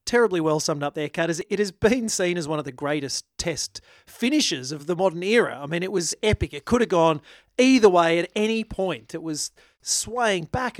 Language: English